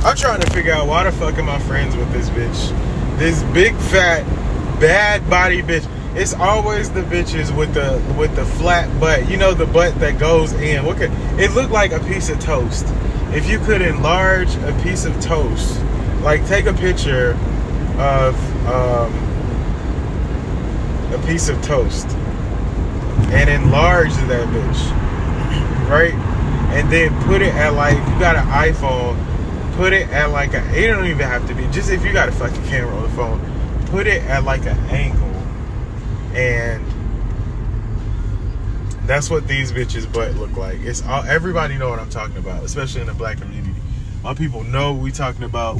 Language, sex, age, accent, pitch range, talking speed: English, male, 20-39, American, 100-130 Hz, 175 wpm